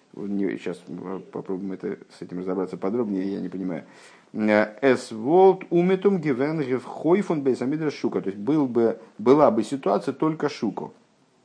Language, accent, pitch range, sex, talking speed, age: Russian, native, 100-135 Hz, male, 110 wpm, 50-69